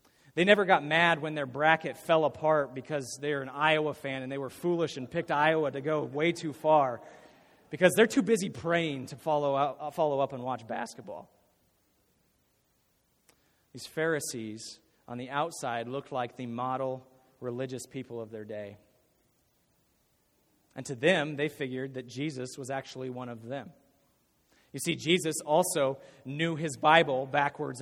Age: 30-49